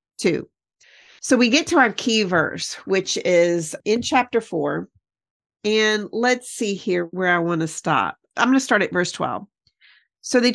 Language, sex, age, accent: English, female, 40-59, American